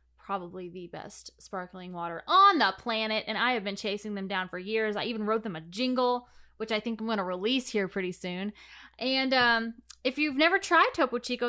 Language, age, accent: English, 20-39, American